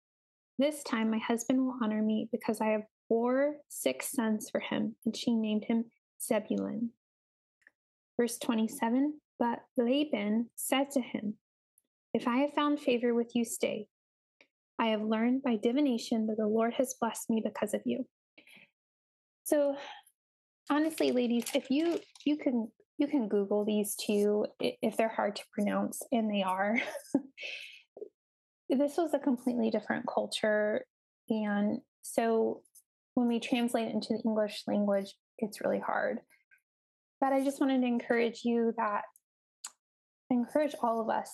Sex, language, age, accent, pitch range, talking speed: female, English, 10-29, American, 225-275 Hz, 145 wpm